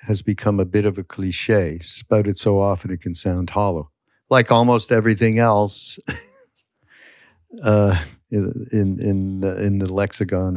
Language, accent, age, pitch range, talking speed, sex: English, American, 60-79, 95-115 Hz, 150 wpm, male